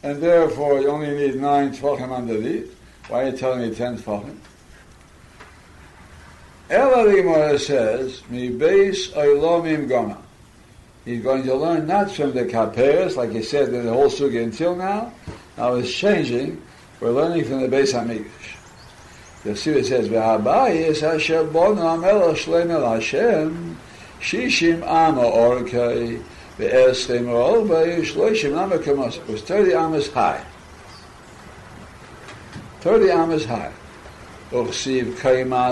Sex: male